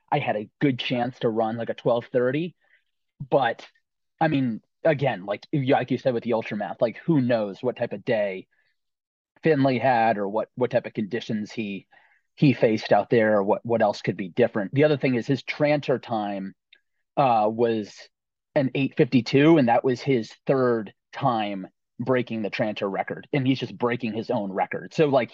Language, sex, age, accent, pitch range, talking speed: English, male, 30-49, American, 110-140 Hz, 190 wpm